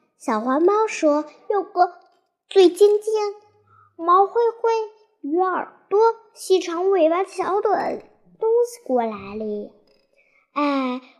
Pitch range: 260-380 Hz